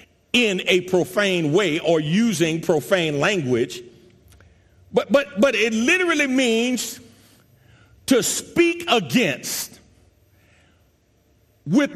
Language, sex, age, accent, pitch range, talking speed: English, male, 40-59, American, 170-260 Hz, 90 wpm